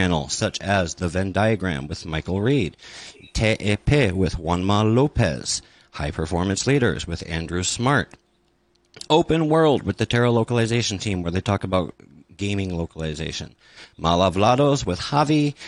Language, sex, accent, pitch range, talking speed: English, male, American, 95-130 Hz, 130 wpm